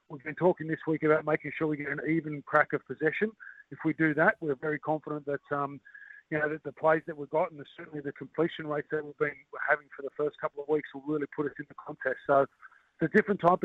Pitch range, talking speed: 140-160 Hz, 265 wpm